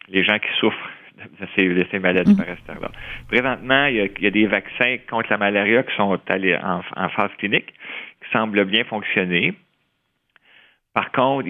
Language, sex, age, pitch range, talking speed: French, male, 40-59, 95-110 Hz, 155 wpm